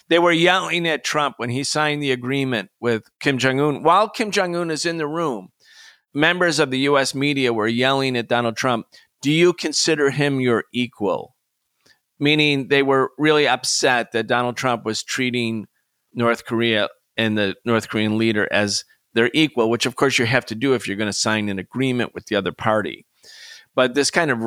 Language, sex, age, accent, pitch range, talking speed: English, male, 40-59, American, 120-155 Hz, 190 wpm